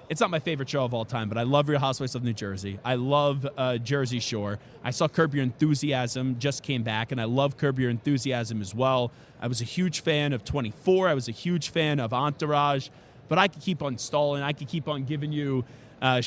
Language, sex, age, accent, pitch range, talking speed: English, male, 20-39, American, 120-150 Hz, 235 wpm